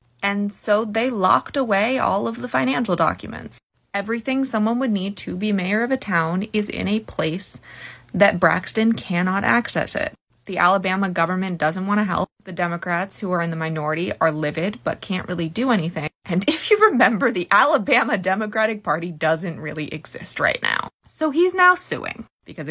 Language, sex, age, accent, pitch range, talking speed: English, female, 20-39, American, 160-205 Hz, 180 wpm